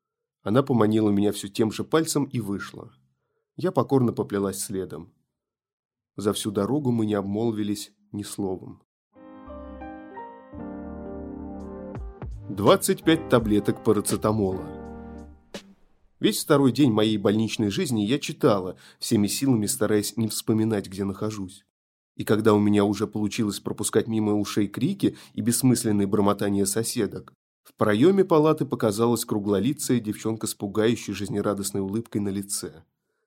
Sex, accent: male, native